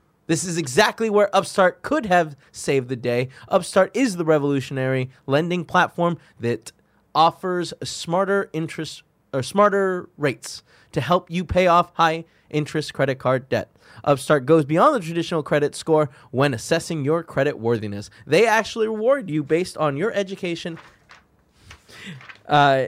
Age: 20-39